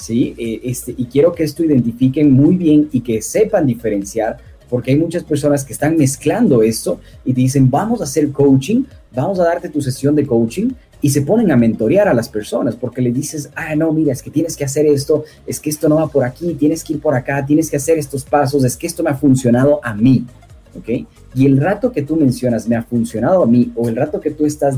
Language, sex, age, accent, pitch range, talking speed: Spanish, male, 30-49, Mexican, 120-150 Hz, 235 wpm